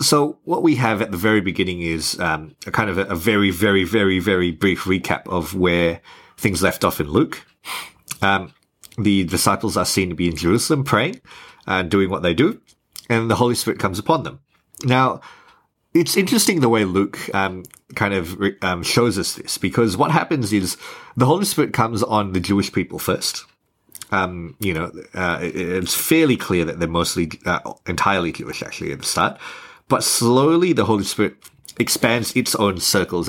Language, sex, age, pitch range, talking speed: English, male, 30-49, 90-115 Hz, 185 wpm